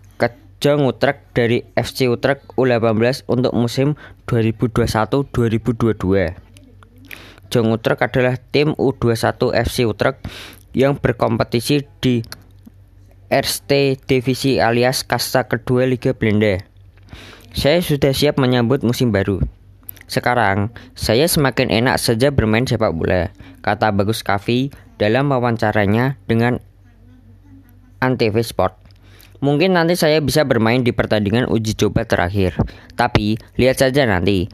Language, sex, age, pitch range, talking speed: Indonesian, female, 20-39, 100-130 Hz, 110 wpm